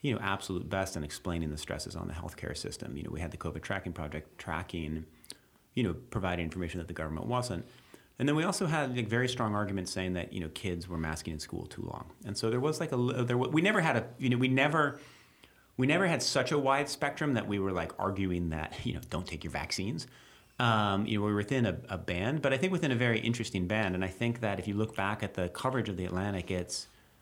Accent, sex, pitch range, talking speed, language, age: American, male, 90-125 Hz, 255 wpm, English, 30-49